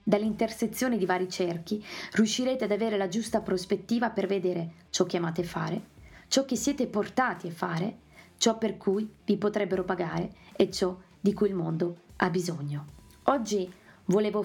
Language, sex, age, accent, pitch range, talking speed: Italian, female, 20-39, native, 180-215 Hz, 160 wpm